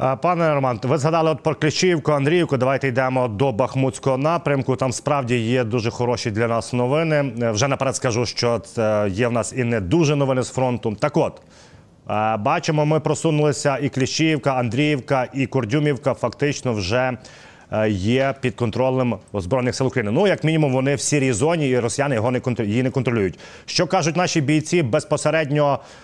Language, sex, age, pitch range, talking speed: Ukrainian, male, 30-49, 125-150 Hz, 160 wpm